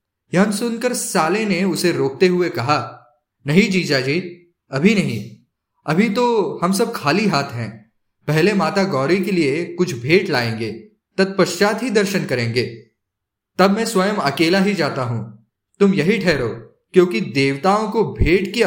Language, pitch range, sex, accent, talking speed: Hindi, 135-200 Hz, male, native, 150 wpm